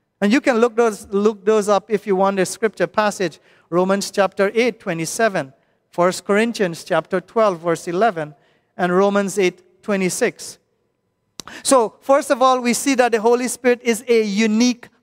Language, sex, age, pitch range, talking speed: English, male, 40-59, 195-250 Hz, 165 wpm